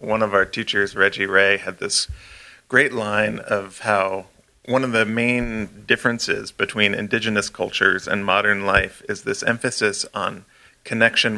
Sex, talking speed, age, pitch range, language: male, 150 wpm, 30-49, 100-115 Hz, English